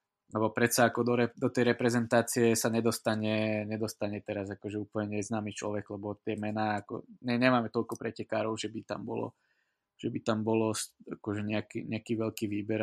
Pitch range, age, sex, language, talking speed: 110-120 Hz, 20-39, male, Slovak, 175 wpm